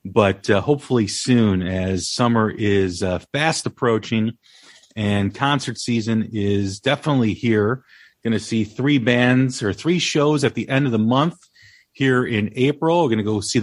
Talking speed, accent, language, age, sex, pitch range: 165 wpm, American, English, 40-59, male, 110-145 Hz